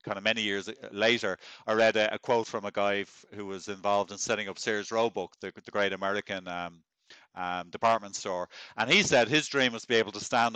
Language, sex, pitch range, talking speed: English, male, 105-125 Hz, 235 wpm